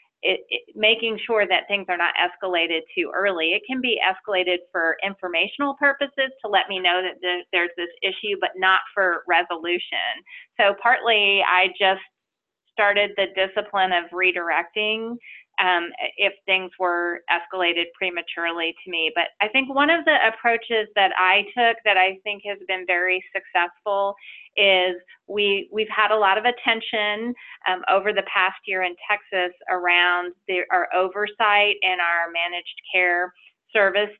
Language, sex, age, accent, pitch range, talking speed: English, female, 30-49, American, 185-220 Hz, 150 wpm